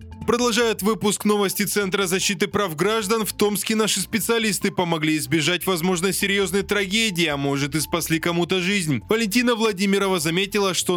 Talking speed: 140 wpm